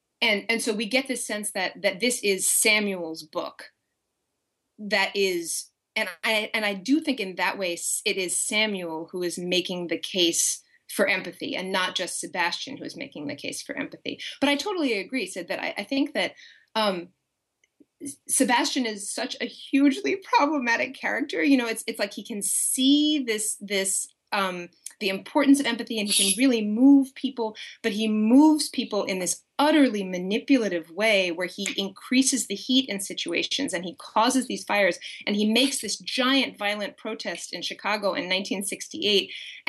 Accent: American